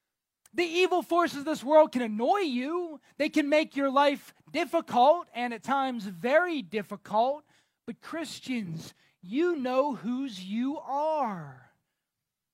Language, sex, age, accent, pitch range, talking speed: English, male, 20-39, American, 195-245 Hz, 130 wpm